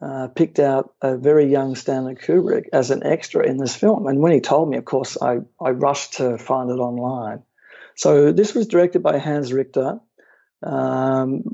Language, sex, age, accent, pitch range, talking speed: English, male, 50-69, Australian, 130-160 Hz, 185 wpm